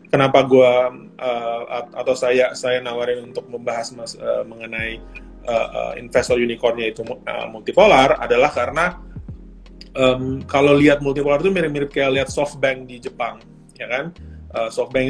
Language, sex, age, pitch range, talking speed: Indonesian, male, 20-39, 120-150 Hz, 140 wpm